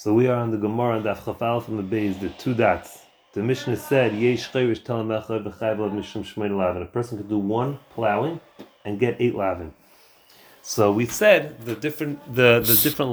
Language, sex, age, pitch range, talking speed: English, male, 30-49, 100-125 Hz, 165 wpm